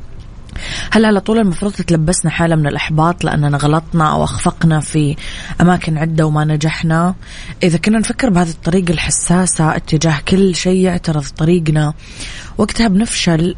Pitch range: 150-180 Hz